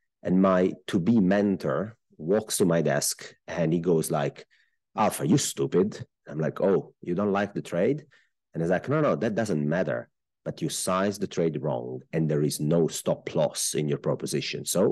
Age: 30-49